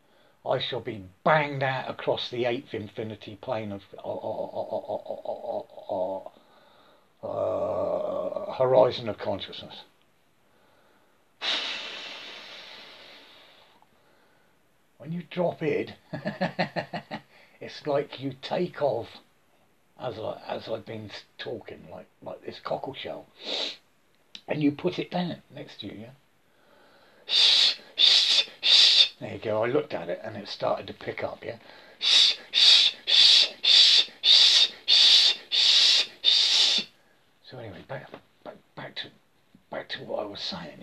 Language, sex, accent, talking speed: English, male, British, 115 wpm